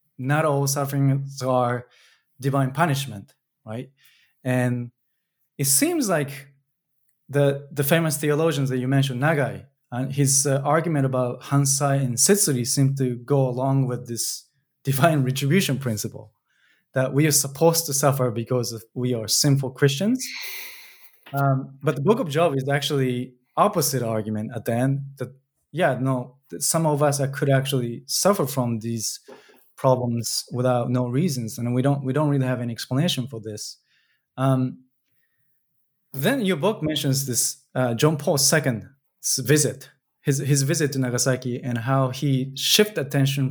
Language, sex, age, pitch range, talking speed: English, male, 20-39, 125-145 Hz, 150 wpm